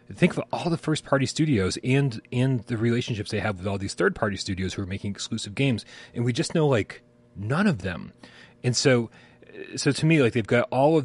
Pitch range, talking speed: 100-125 Hz, 215 wpm